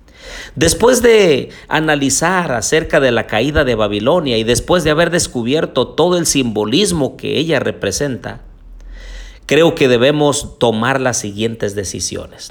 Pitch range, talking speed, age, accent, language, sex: 110-165 Hz, 130 wpm, 50-69, Mexican, Spanish, male